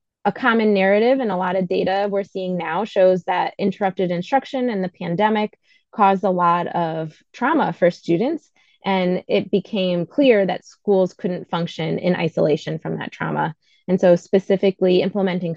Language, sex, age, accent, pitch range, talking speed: English, female, 20-39, American, 175-205 Hz, 160 wpm